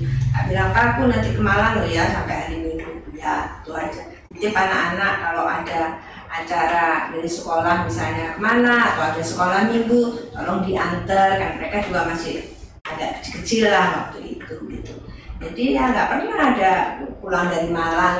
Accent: native